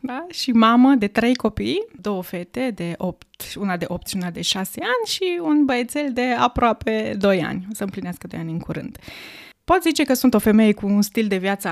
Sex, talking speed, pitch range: female, 220 wpm, 190-265 Hz